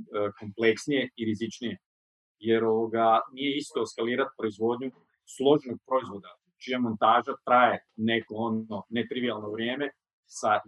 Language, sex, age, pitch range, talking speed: Croatian, male, 30-49, 115-145 Hz, 105 wpm